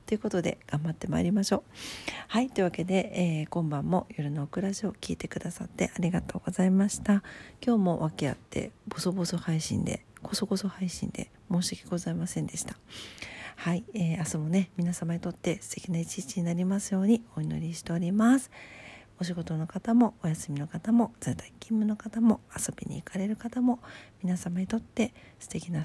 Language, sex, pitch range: Japanese, female, 170-215 Hz